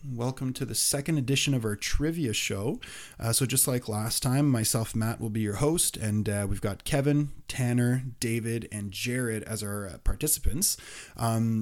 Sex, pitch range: male, 105-120 Hz